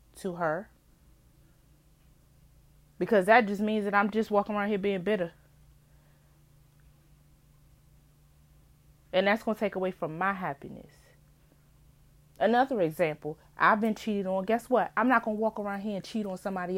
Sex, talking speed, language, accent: female, 150 wpm, English, American